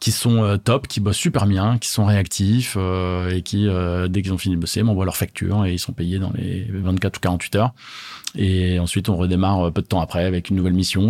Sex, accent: male, French